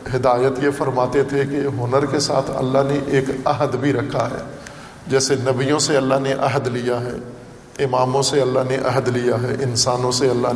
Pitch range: 125-145 Hz